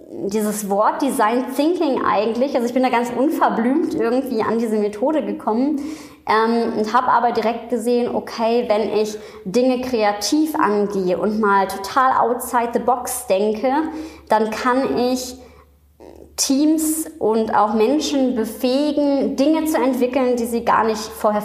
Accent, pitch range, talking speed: German, 220-270 Hz, 145 wpm